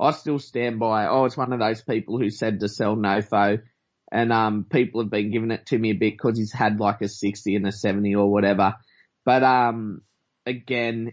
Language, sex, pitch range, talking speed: English, male, 110-125 Hz, 215 wpm